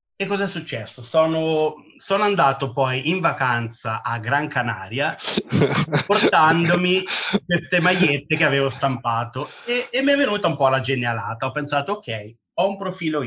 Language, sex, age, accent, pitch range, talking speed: Italian, male, 30-49, native, 115-160 Hz, 150 wpm